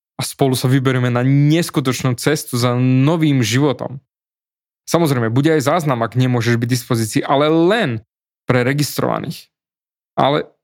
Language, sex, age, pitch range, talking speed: Slovak, male, 20-39, 130-160 Hz, 135 wpm